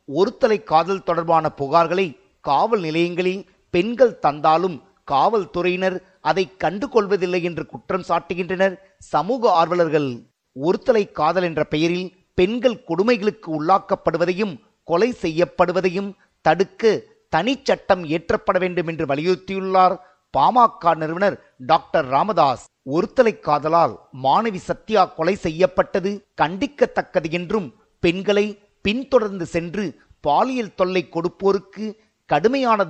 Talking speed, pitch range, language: 90 wpm, 165-195 Hz, Tamil